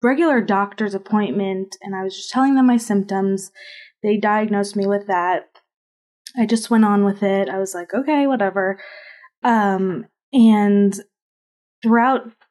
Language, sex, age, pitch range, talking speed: English, female, 20-39, 195-225 Hz, 145 wpm